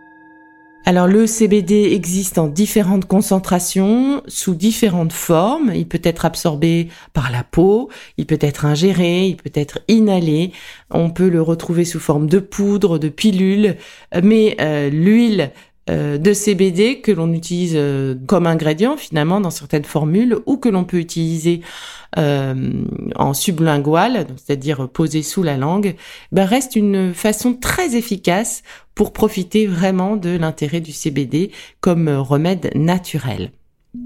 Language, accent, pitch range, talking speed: French, French, 155-200 Hz, 140 wpm